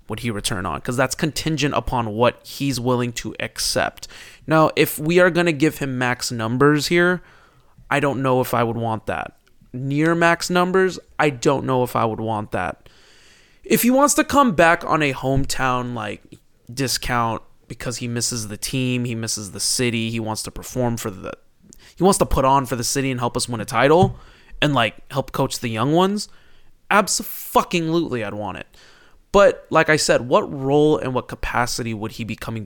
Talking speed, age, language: 200 wpm, 20-39, English